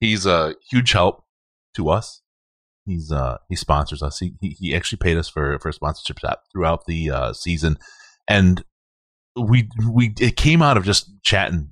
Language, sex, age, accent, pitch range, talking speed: English, male, 30-49, American, 75-95 Hz, 175 wpm